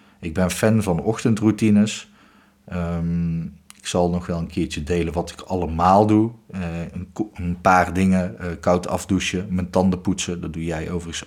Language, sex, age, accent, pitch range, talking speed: Dutch, male, 40-59, Dutch, 85-100 Hz, 170 wpm